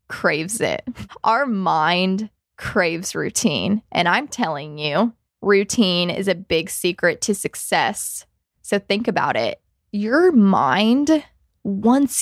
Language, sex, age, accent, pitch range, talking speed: English, female, 20-39, American, 190-225 Hz, 120 wpm